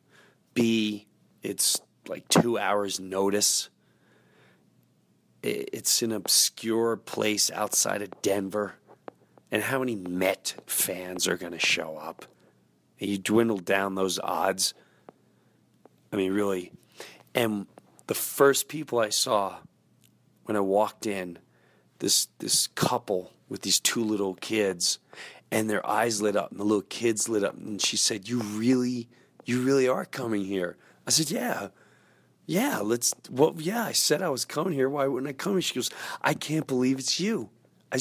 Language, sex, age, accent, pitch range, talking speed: English, male, 40-59, American, 105-135 Hz, 150 wpm